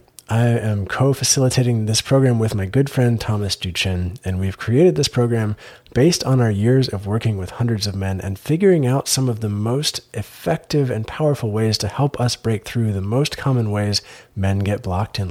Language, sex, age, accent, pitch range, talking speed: English, male, 30-49, American, 100-130 Hz, 195 wpm